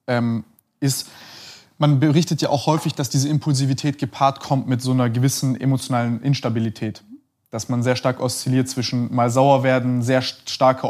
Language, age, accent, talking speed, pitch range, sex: German, 20-39, German, 155 wpm, 135-165 Hz, male